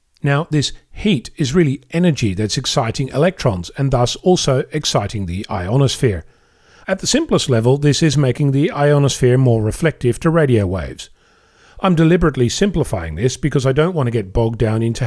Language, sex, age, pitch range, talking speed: English, male, 40-59, 120-160 Hz, 165 wpm